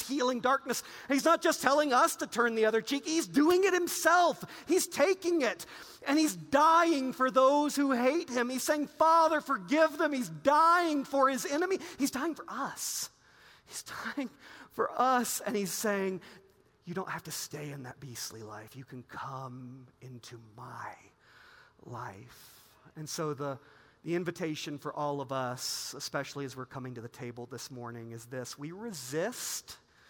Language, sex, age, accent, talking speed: English, male, 40-59, American, 170 wpm